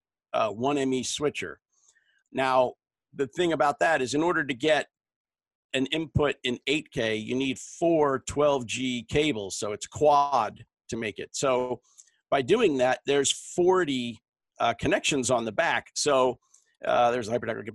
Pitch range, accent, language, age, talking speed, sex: 125-155 Hz, American, English, 50-69, 155 wpm, male